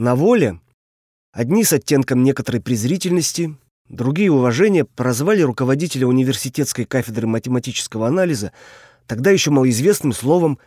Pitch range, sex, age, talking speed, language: 115-145 Hz, male, 30-49, 105 wpm, Russian